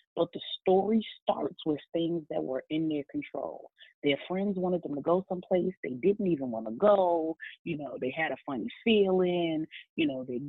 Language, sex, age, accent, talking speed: English, female, 30-49, American, 195 wpm